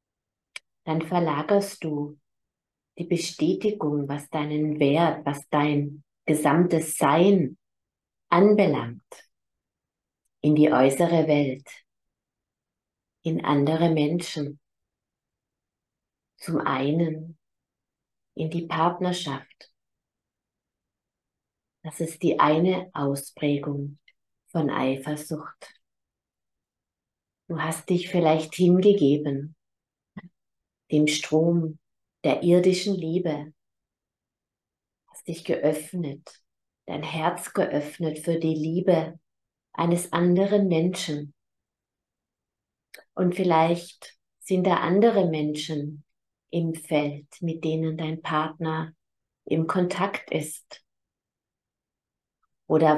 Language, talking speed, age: German, 80 wpm, 30-49